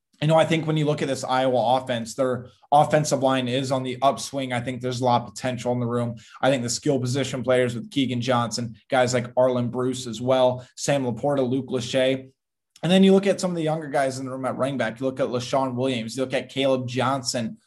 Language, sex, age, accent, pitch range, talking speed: English, male, 20-39, American, 120-135 Hz, 250 wpm